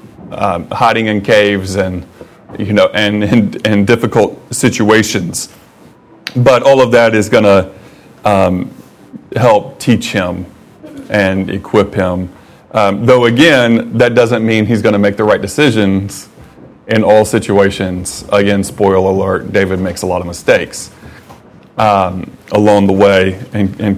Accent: American